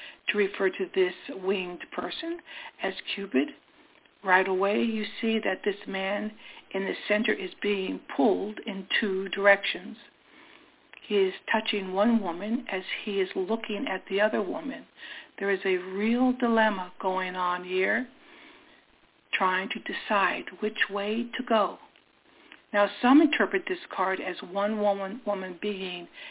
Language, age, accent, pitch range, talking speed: English, 60-79, American, 190-240 Hz, 140 wpm